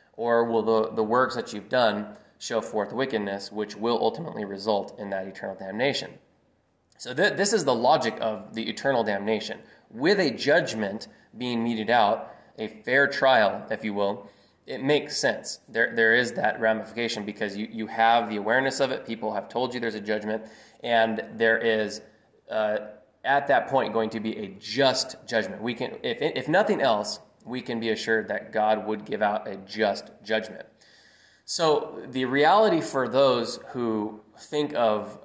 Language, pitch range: English, 110-125 Hz